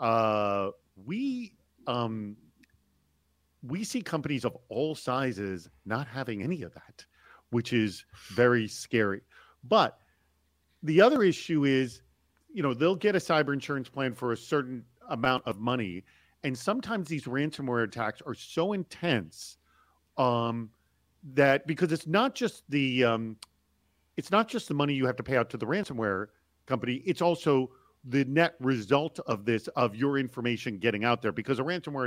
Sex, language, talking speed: male, English, 155 wpm